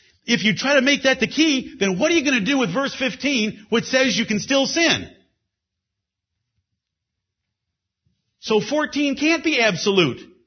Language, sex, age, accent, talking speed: English, male, 50-69, American, 165 wpm